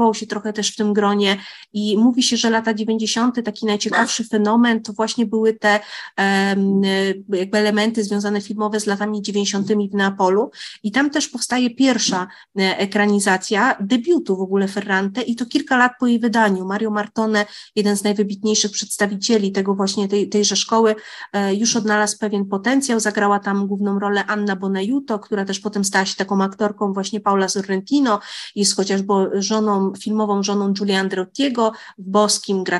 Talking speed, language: 160 wpm, Polish